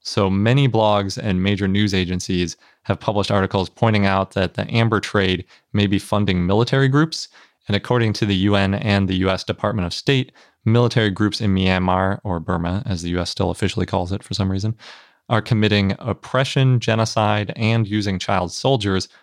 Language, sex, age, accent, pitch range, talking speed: English, male, 30-49, American, 90-110 Hz, 175 wpm